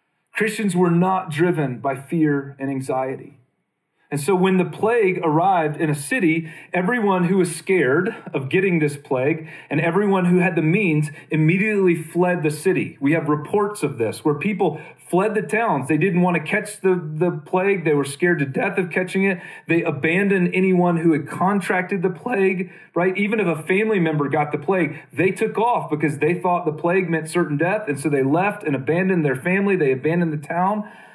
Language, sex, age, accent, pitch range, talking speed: English, male, 40-59, American, 150-185 Hz, 195 wpm